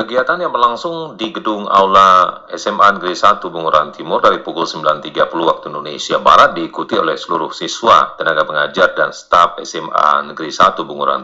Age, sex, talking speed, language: 40-59, male, 155 wpm, Indonesian